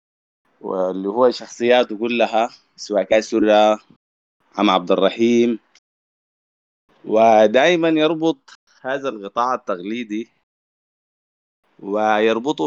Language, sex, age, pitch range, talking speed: Arabic, male, 20-39, 110-140 Hz, 70 wpm